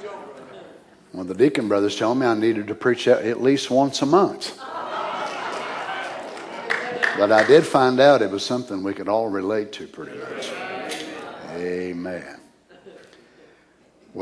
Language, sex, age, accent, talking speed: English, male, 60-79, American, 135 wpm